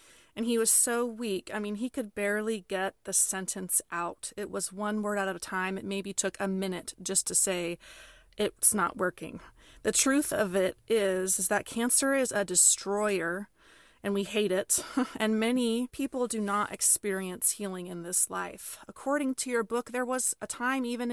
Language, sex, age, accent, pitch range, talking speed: English, female, 30-49, American, 195-260 Hz, 185 wpm